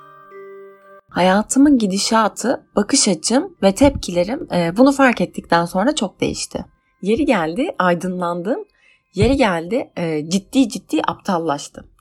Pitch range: 180-260 Hz